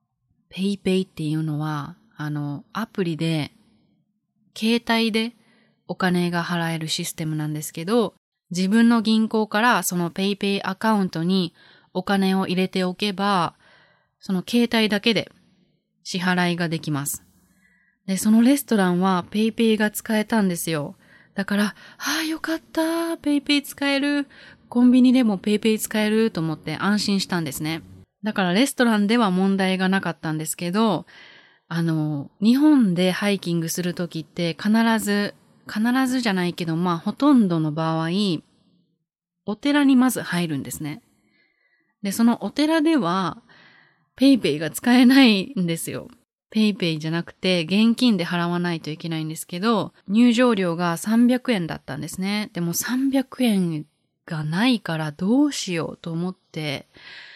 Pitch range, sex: 170-225 Hz, female